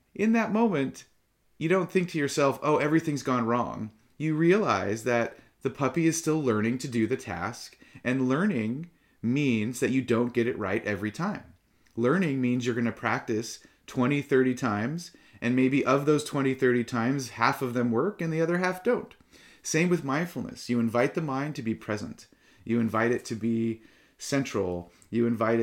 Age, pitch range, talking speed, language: 30-49, 115-145 Hz, 185 wpm, English